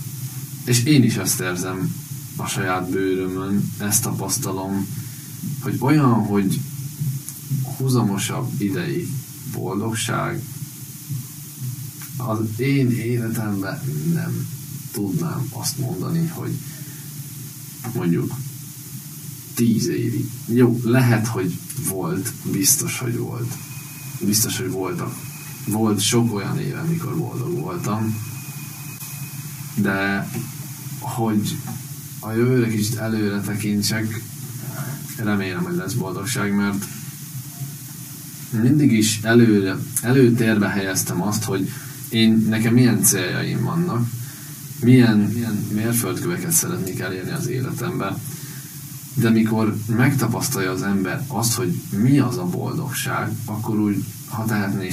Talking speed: 100 wpm